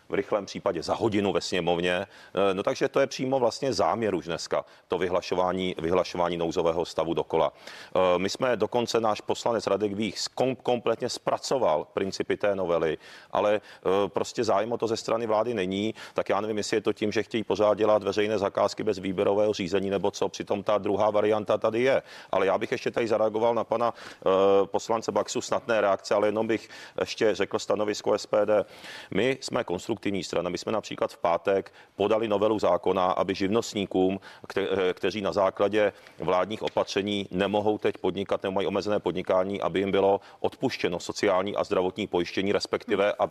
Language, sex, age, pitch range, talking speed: Czech, male, 40-59, 95-110 Hz, 170 wpm